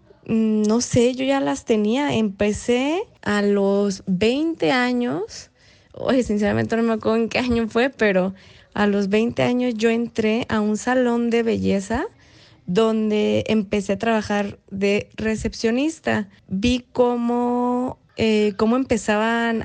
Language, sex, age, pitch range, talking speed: Spanish, female, 20-39, 195-230 Hz, 130 wpm